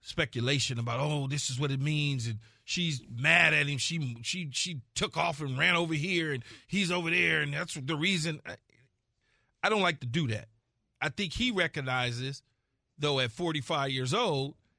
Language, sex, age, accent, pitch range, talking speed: English, male, 40-59, American, 130-175 Hz, 190 wpm